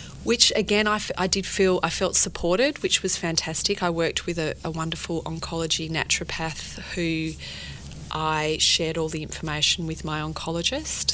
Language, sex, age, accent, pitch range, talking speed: English, female, 30-49, Australian, 150-180 Hz, 160 wpm